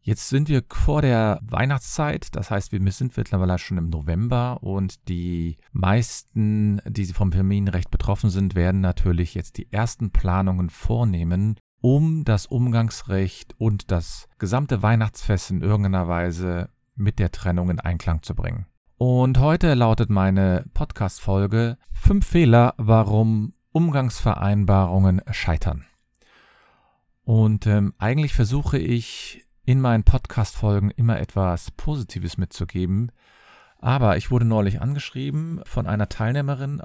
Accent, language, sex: German, German, male